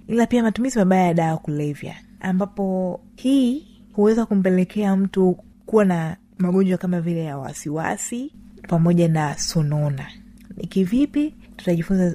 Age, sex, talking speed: 30-49, female, 125 wpm